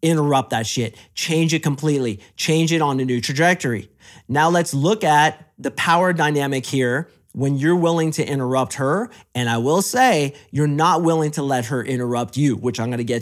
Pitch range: 130-170 Hz